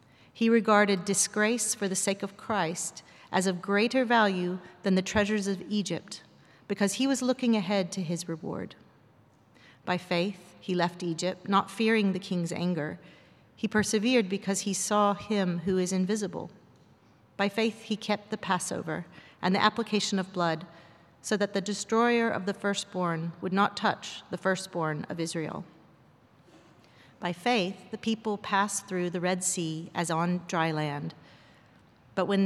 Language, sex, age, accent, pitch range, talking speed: English, female, 40-59, American, 170-205 Hz, 155 wpm